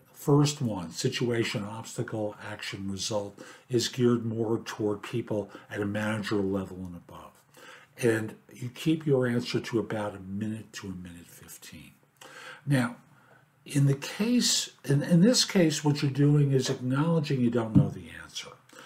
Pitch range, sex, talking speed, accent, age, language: 115-160 Hz, male, 155 wpm, American, 60-79, English